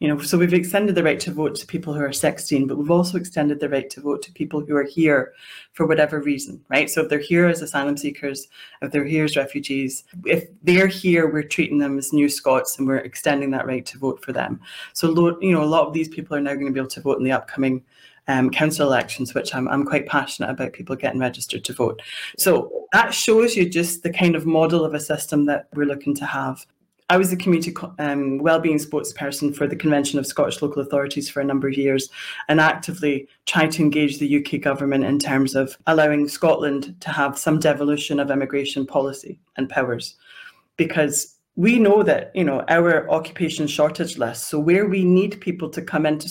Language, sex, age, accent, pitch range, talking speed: English, female, 30-49, British, 140-165 Hz, 220 wpm